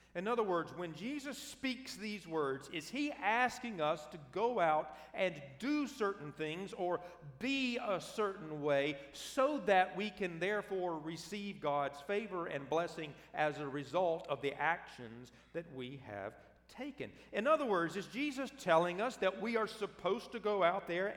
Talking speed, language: 165 wpm, English